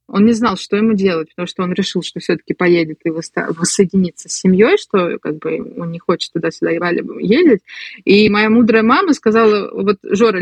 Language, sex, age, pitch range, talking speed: Russian, female, 20-39, 195-240 Hz, 190 wpm